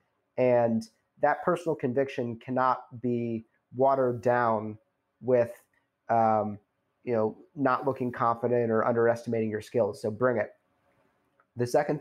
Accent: American